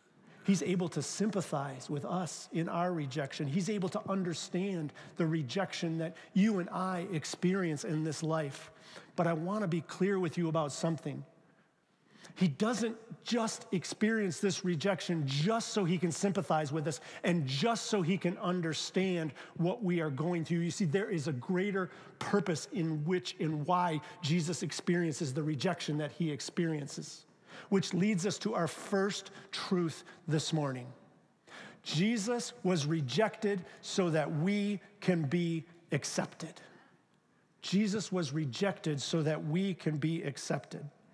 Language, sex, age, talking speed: English, male, 40-59, 150 wpm